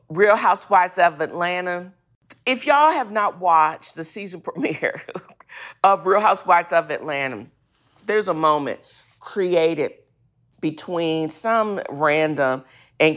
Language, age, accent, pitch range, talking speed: English, 40-59, American, 155-240 Hz, 115 wpm